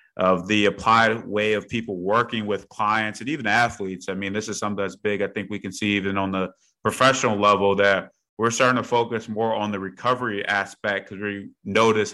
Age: 30-49